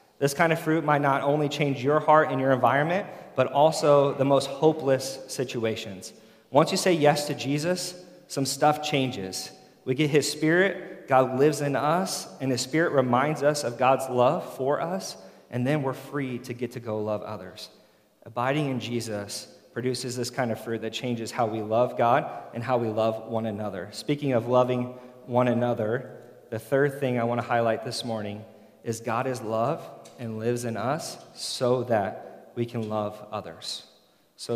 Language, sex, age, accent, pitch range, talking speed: English, male, 30-49, American, 115-145 Hz, 180 wpm